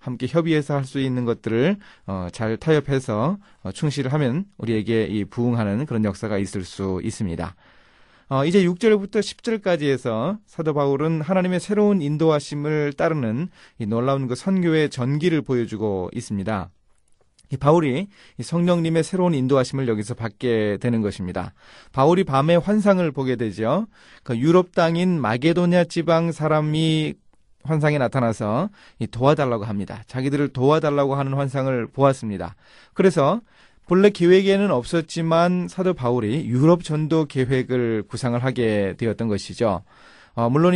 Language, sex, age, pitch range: Korean, male, 30-49, 115-165 Hz